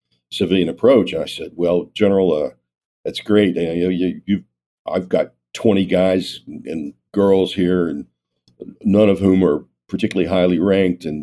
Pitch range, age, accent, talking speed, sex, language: 75-95 Hz, 50-69, American, 165 wpm, male, English